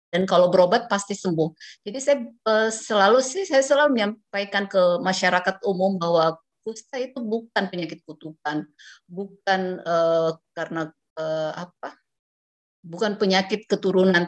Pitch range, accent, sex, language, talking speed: 165-210 Hz, native, female, Indonesian, 120 wpm